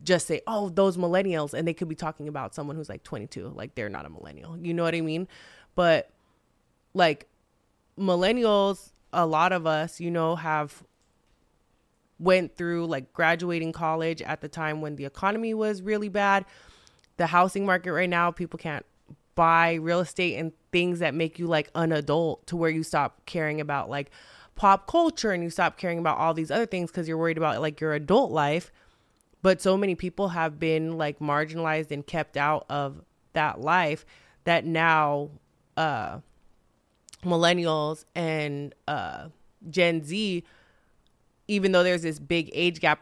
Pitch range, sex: 155-175 Hz, female